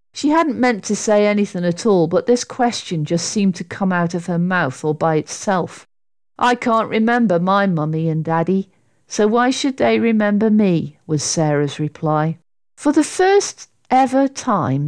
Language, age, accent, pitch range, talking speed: English, 50-69, British, 170-275 Hz, 175 wpm